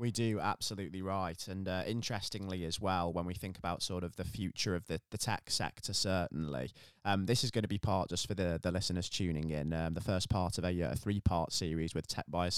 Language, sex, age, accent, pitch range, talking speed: English, male, 20-39, British, 90-105 Hz, 230 wpm